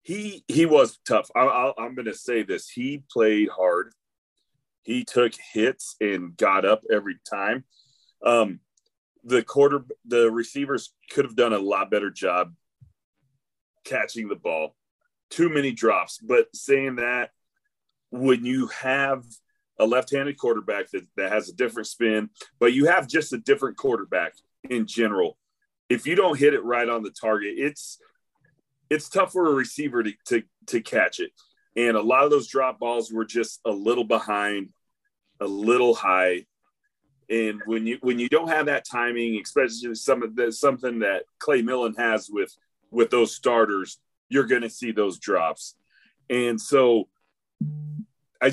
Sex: male